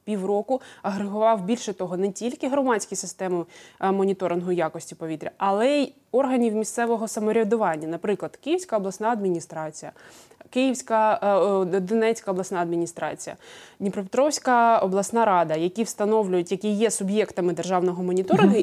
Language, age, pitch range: Ukrainian, 20-39, 190-240 Hz